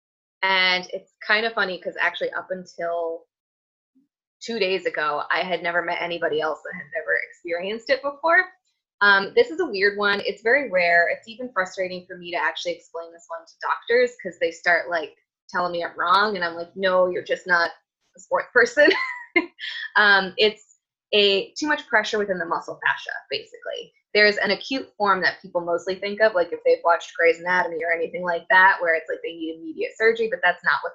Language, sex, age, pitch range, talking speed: English, female, 20-39, 170-265 Hz, 200 wpm